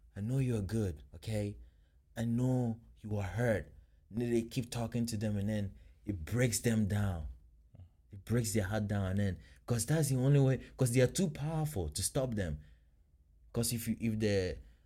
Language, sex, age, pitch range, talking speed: English, male, 20-39, 80-120 Hz, 165 wpm